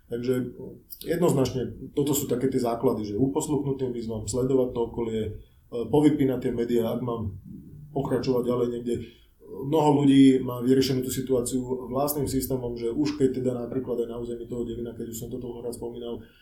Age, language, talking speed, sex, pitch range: 30-49, Slovak, 170 wpm, male, 115-130 Hz